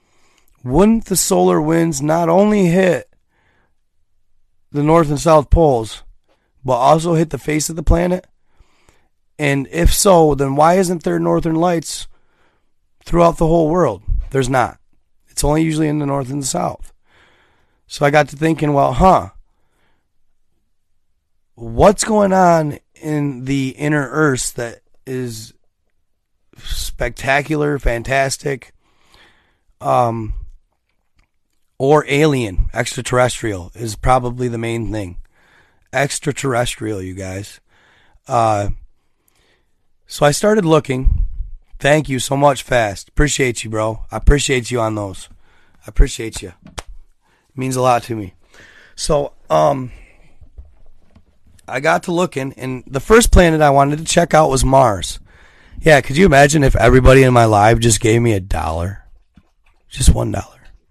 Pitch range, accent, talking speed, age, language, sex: 105-155 Hz, American, 135 wpm, 30-49, English, male